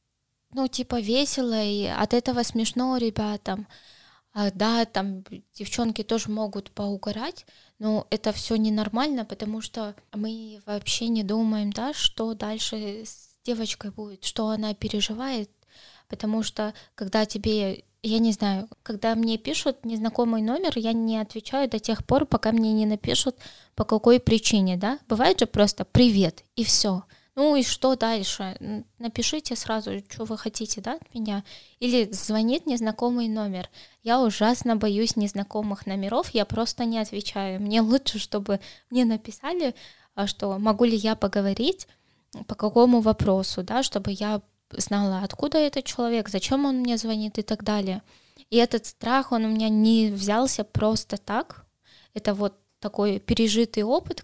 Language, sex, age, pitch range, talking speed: Russian, female, 10-29, 210-235 Hz, 145 wpm